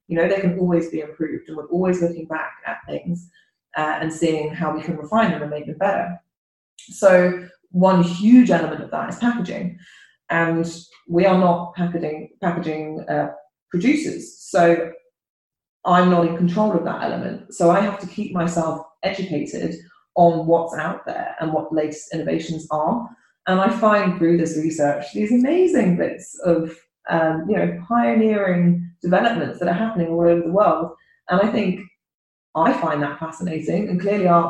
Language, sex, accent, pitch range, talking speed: English, female, British, 160-195 Hz, 170 wpm